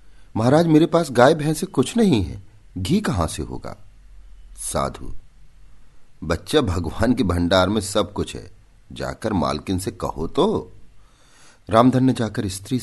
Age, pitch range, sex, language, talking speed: 50-69, 80-110 Hz, male, Hindi, 140 wpm